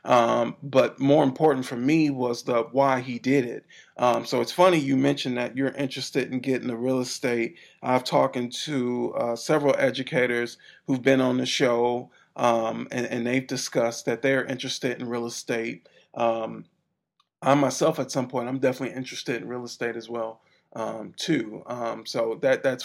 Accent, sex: American, male